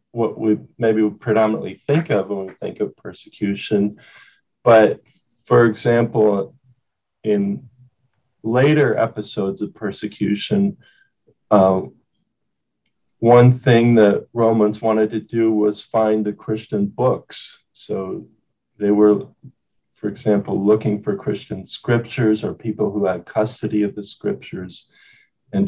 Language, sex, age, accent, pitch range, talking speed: English, male, 40-59, American, 105-125 Hz, 120 wpm